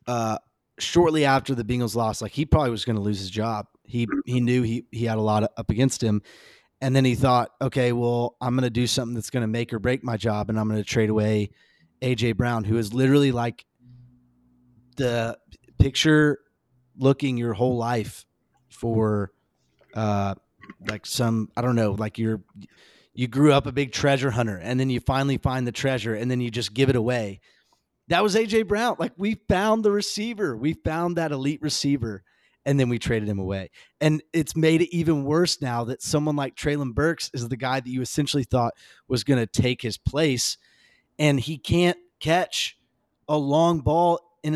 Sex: male